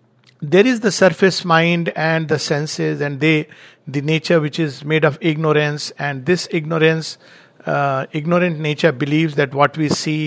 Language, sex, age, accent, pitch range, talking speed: English, male, 50-69, Indian, 150-195 Hz, 165 wpm